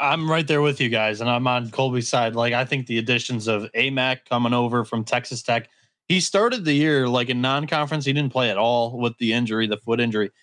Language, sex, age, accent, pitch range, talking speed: English, male, 20-39, American, 120-145 Hz, 235 wpm